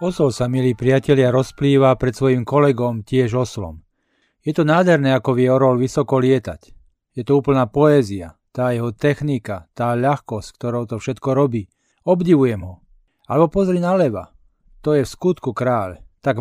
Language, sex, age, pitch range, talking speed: Slovak, male, 40-59, 115-145 Hz, 155 wpm